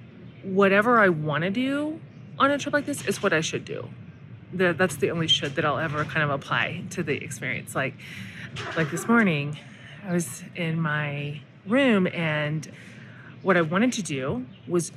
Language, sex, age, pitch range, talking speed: English, female, 30-49, 150-195 Hz, 175 wpm